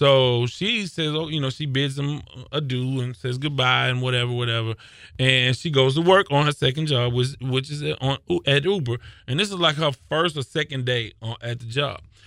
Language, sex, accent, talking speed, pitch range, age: English, male, American, 215 wpm, 125-155 Hz, 20-39